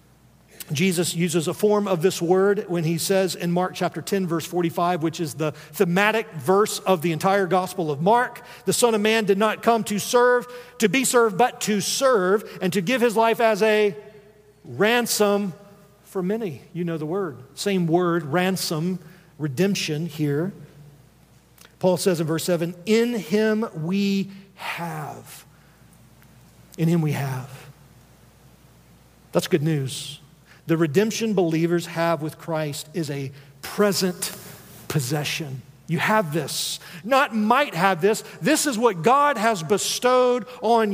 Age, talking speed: 50-69, 150 wpm